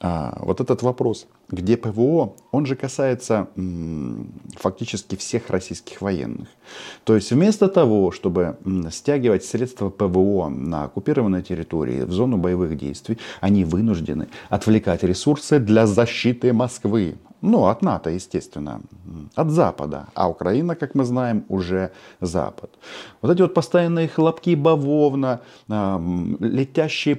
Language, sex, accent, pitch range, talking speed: Russian, male, native, 95-125 Hz, 120 wpm